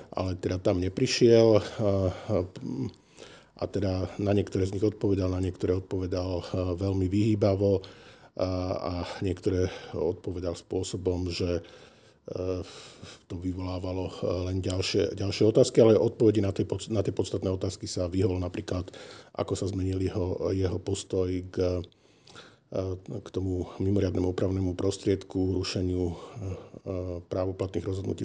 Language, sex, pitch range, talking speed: Slovak, male, 90-100 Hz, 115 wpm